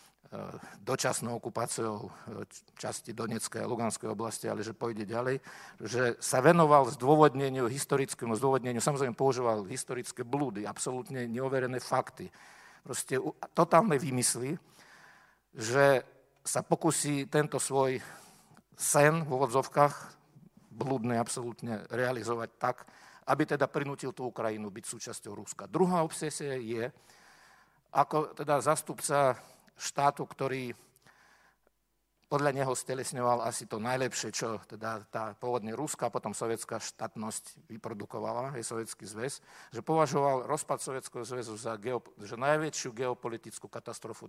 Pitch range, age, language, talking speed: 115-145 Hz, 50-69, Slovak, 115 wpm